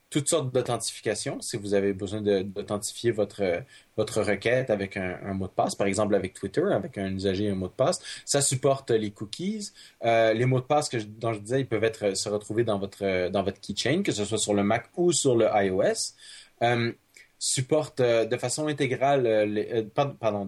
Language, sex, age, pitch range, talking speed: French, male, 20-39, 105-135 Hz, 205 wpm